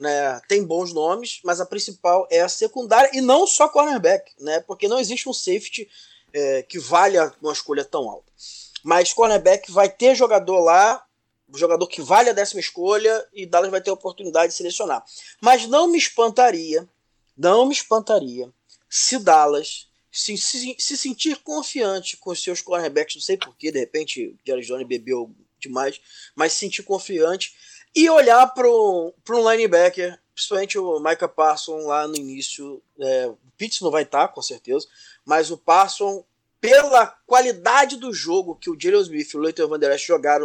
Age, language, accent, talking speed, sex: 20-39, Portuguese, Brazilian, 170 wpm, male